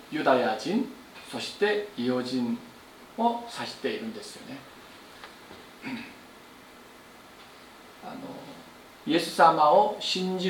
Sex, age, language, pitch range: male, 40-59, Japanese, 140-205 Hz